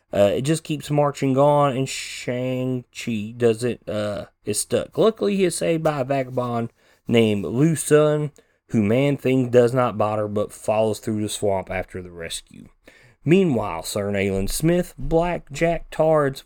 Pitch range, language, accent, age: 105-135 Hz, English, American, 30-49